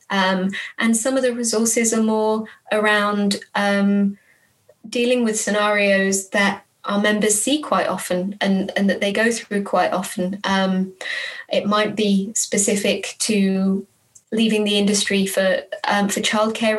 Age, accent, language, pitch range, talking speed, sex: 20-39, British, English, 195-225 Hz, 145 wpm, female